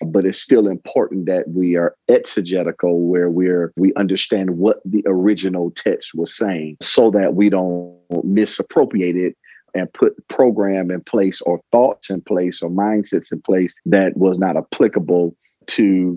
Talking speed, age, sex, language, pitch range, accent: 155 wpm, 40-59, male, English, 90-105 Hz, American